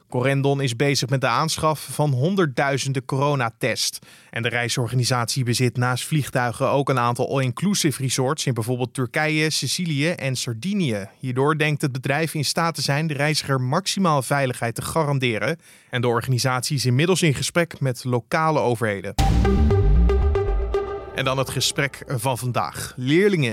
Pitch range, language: 125-165 Hz, Dutch